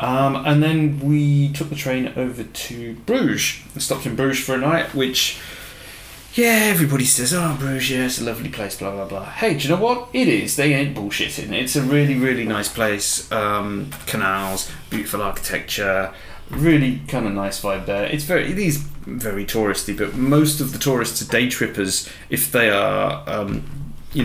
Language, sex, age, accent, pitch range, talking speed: English, male, 30-49, British, 100-135 Hz, 180 wpm